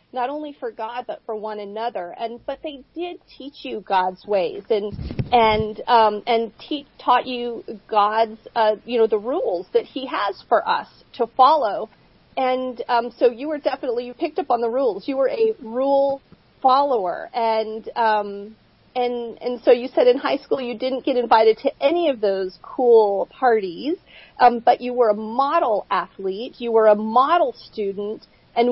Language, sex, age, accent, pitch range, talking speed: English, female, 40-59, American, 220-275 Hz, 180 wpm